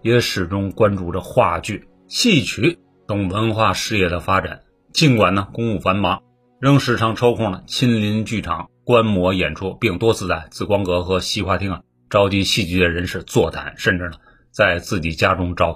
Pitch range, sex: 90-120 Hz, male